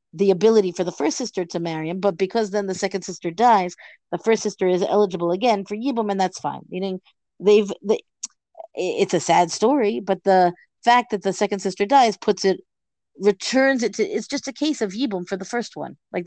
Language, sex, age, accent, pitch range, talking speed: English, female, 50-69, American, 185-240 Hz, 215 wpm